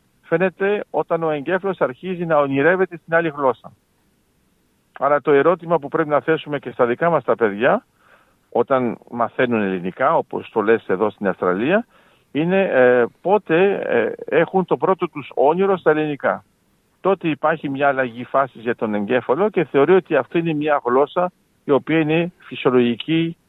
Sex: male